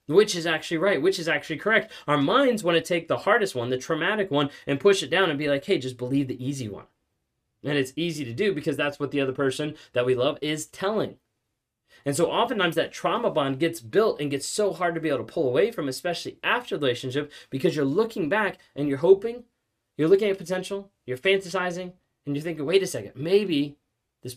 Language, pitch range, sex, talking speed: English, 135-185 Hz, male, 225 wpm